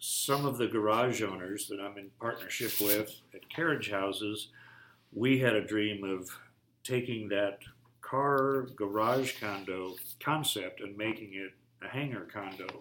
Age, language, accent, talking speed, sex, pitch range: 50-69, English, American, 140 wpm, male, 100-120 Hz